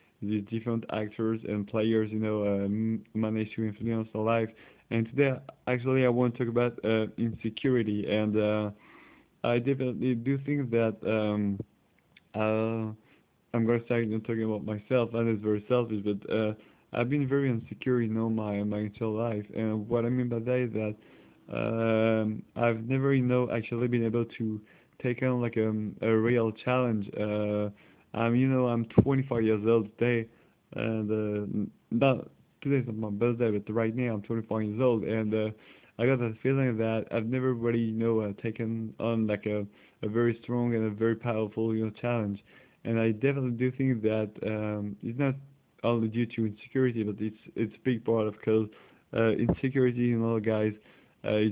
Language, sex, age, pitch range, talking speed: English, male, 20-39, 110-120 Hz, 180 wpm